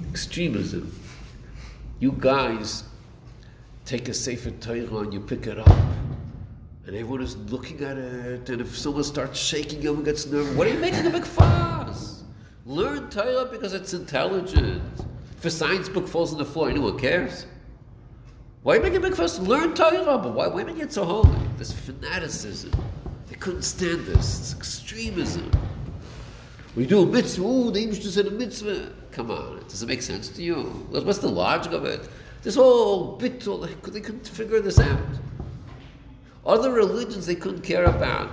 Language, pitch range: English, 120-205 Hz